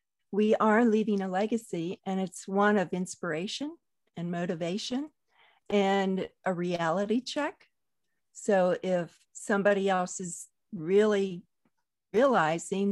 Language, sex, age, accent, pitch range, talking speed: English, female, 50-69, American, 180-220 Hz, 105 wpm